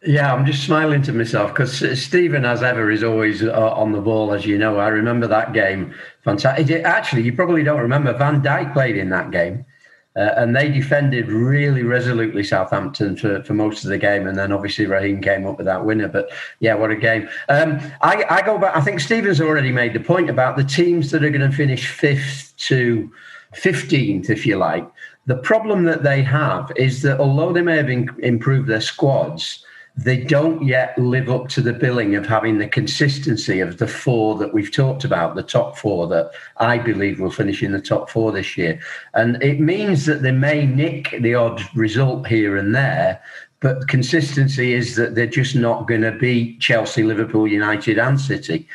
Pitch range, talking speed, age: 110-140 Hz, 200 wpm, 40-59